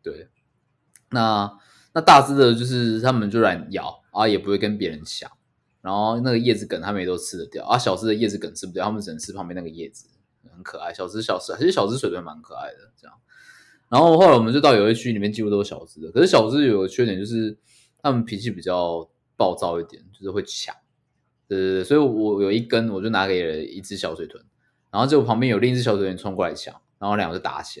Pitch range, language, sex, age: 100-130 Hz, Chinese, male, 20-39